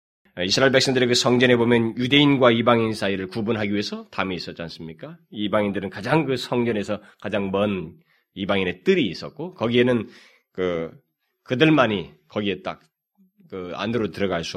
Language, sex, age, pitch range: Korean, male, 30-49, 100-140 Hz